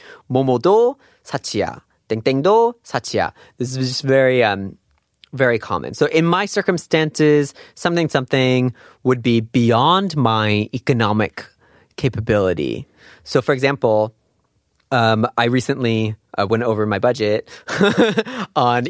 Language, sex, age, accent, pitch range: Korean, male, 30-49, American, 115-165 Hz